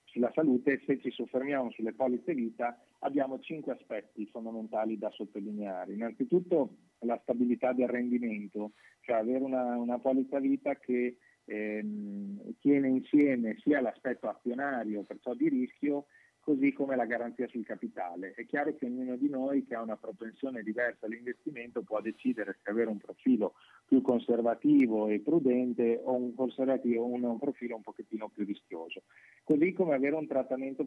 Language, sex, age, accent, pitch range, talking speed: Italian, male, 30-49, native, 115-140 Hz, 150 wpm